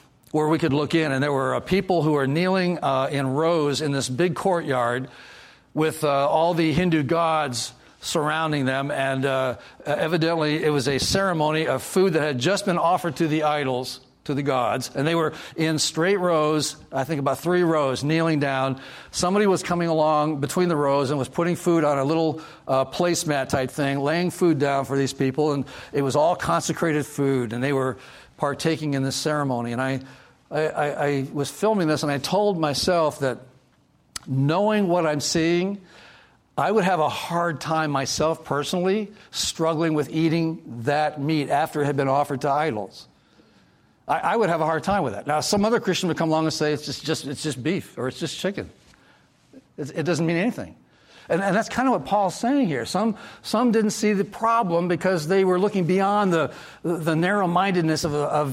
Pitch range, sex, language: 140-175 Hz, male, English